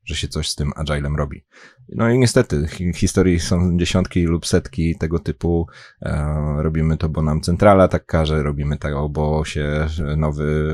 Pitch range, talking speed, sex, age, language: 75-90 Hz, 170 wpm, male, 30-49, Polish